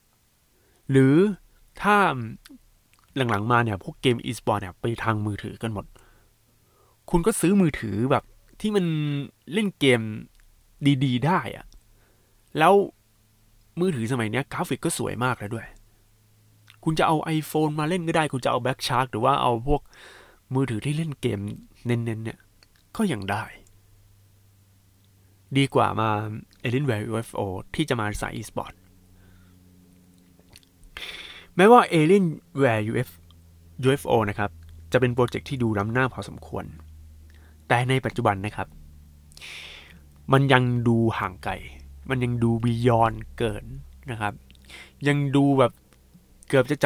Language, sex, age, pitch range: Thai, male, 20-39, 100-135 Hz